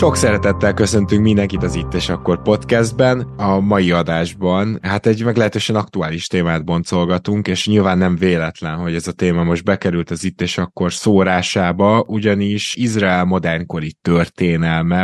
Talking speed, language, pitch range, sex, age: 150 wpm, Hungarian, 85-100 Hz, male, 20-39